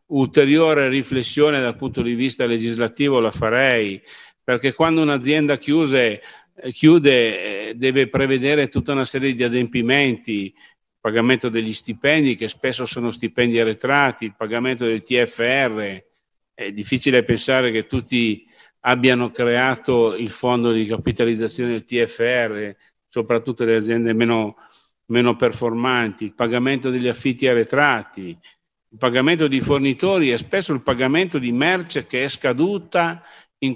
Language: Italian